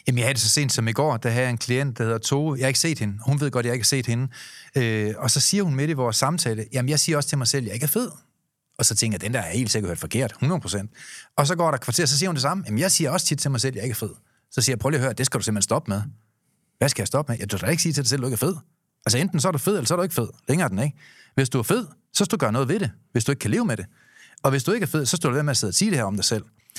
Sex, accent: male, native